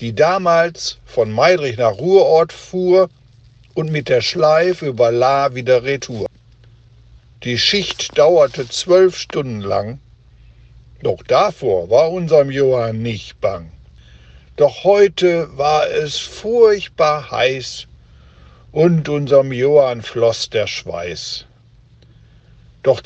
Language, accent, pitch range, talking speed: German, German, 115-175 Hz, 105 wpm